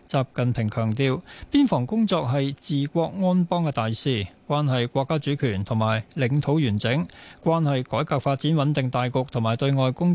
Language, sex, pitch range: Chinese, male, 125-160 Hz